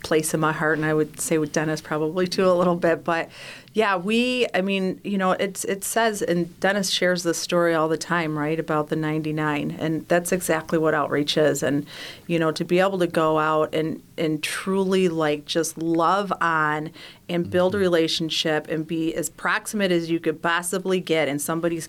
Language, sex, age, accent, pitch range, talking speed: English, female, 40-59, American, 155-180 Hz, 205 wpm